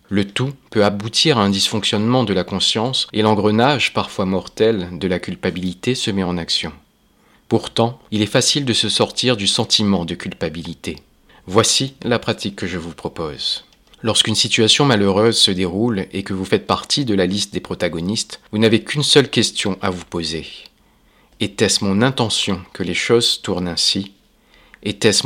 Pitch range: 95-110 Hz